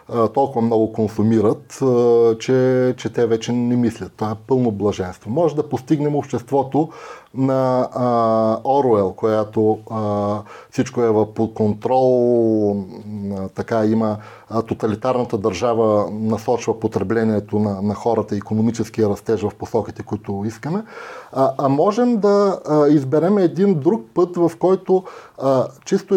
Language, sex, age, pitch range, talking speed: Bulgarian, male, 30-49, 110-155 Hz, 125 wpm